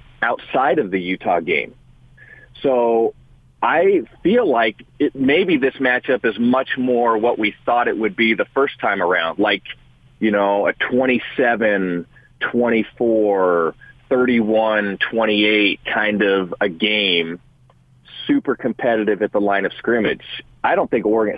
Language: English